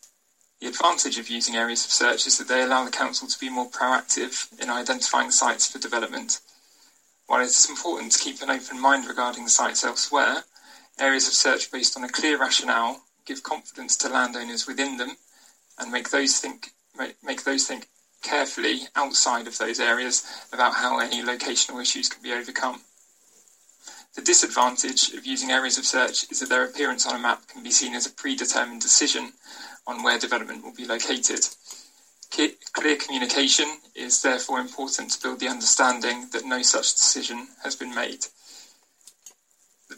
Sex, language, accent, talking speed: male, English, British, 170 wpm